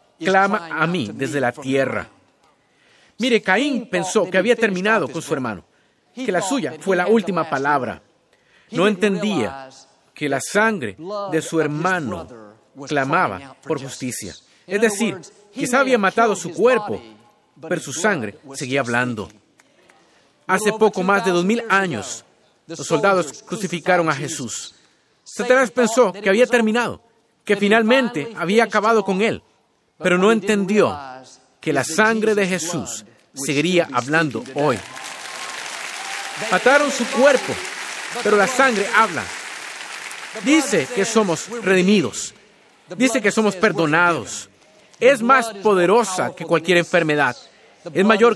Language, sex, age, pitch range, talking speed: Spanish, male, 50-69, 160-220 Hz, 125 wpm